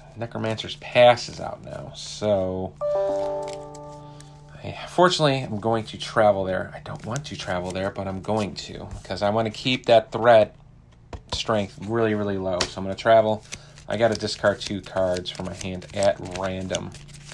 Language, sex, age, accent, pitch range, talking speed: English, male, 30-49, American, 100-150 Hz, 175 wpm